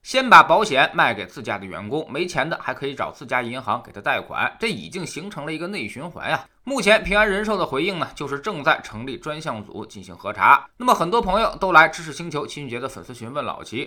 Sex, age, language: male, 20-39, Chinese